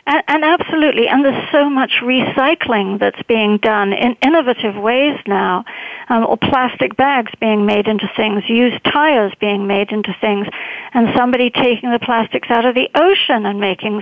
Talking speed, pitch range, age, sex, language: 170 wpm, 215-265 Hz, 60-79, female, English